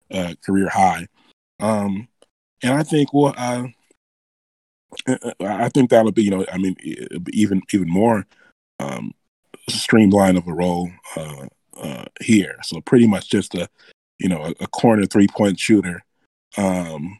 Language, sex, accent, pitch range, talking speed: English, male, American, 95-110 Hz, 150 wpm